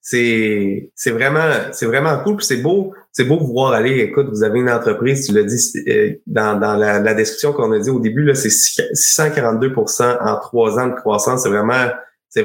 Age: 30-49